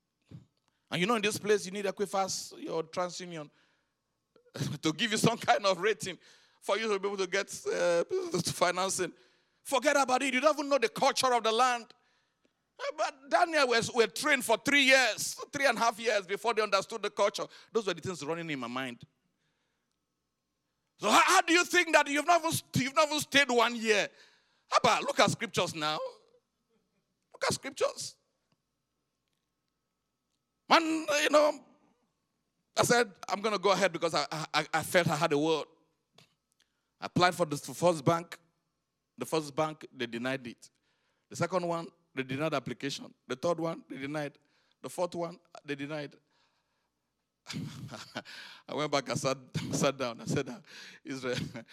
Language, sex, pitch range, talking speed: English, male, 150-240 Hz, 170 wpm